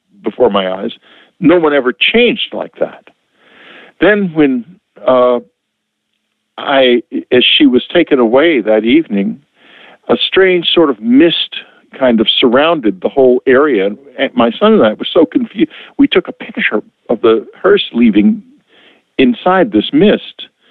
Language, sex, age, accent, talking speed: English, male, 60-79, American, 145 wpm